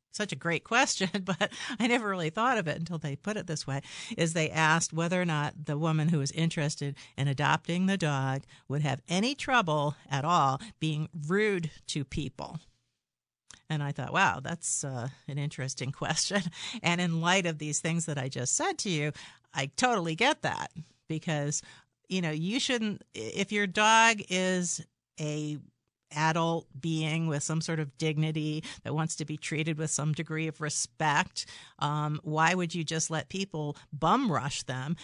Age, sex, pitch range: 50-69, female, 145-175 Hz